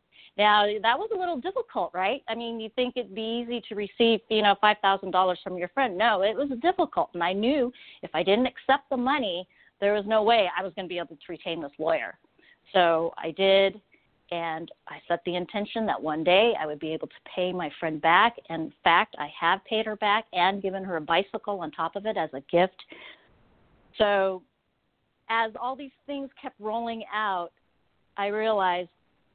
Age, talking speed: 40-59, 200 wpm